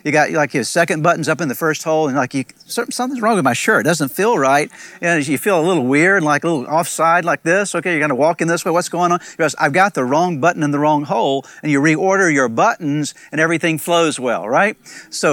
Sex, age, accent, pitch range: male, 50-69, American, 150-190 Hz